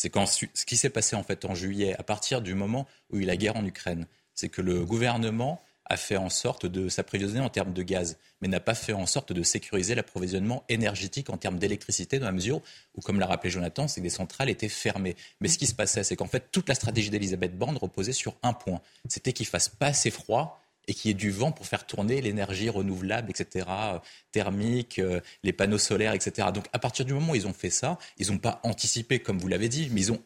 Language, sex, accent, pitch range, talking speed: French, male, French, 95-120 Hz, 250 wpm